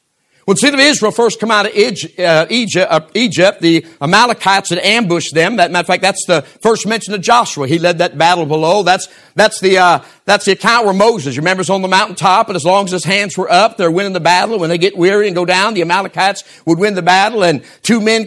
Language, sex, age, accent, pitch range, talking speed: English, male, 50-69, American, 175-220 Hz, 235 wpm